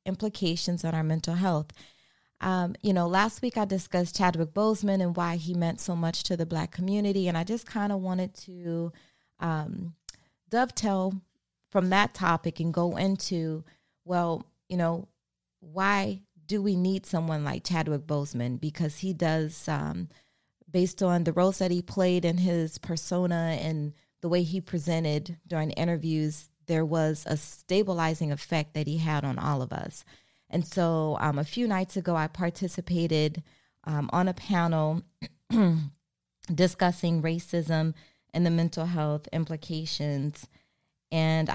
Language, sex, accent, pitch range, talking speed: English, female, American, 155-180 Hz, 150 wpm